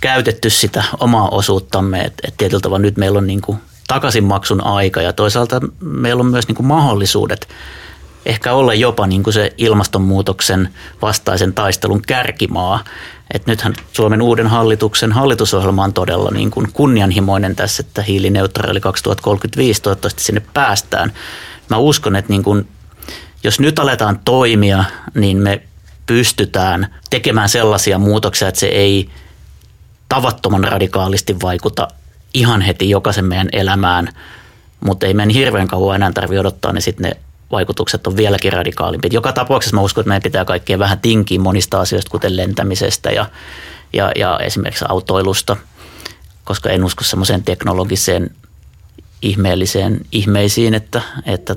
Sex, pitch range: male, 95-110 Hz